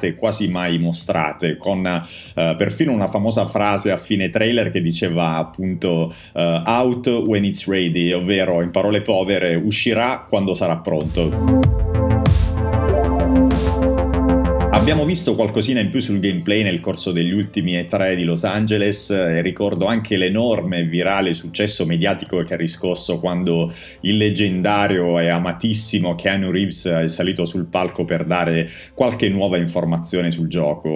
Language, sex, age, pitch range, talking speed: Italian, male, 30-49, 85-105 Hz, 135 wpm